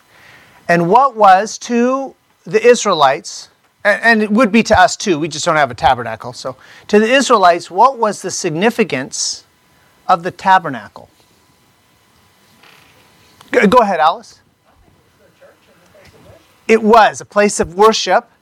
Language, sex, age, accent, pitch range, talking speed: English, male, 40-59, American, 170-225 Hz, 125 wpm